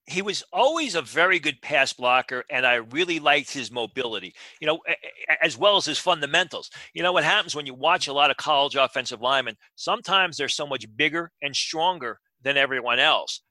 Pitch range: 130-155 Hz